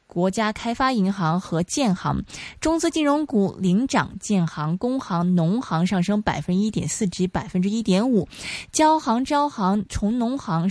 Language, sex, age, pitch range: Chinese, female, 20-39, 180-245 Hz